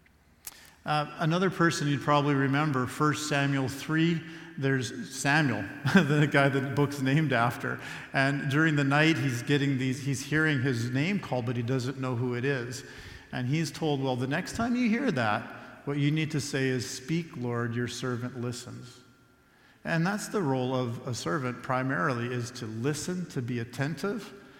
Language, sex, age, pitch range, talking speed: English, male, 50-69, 125-155 Hz, 175 wpm